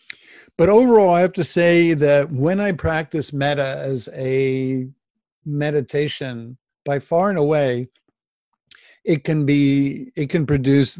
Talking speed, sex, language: 130 wpm, male, English